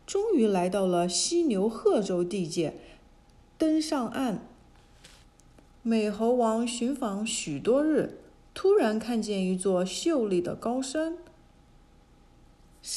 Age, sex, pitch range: 50-69, female, 195-275 Hz